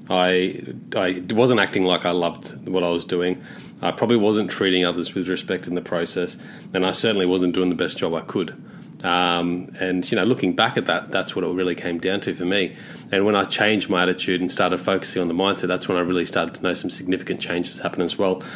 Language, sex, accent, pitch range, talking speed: English, male, Australian, 90-105 Hz, 235 wpm